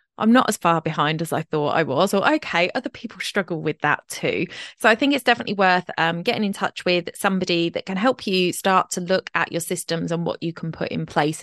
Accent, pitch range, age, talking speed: British, 165-210 Hz, 20-39, 245 wpm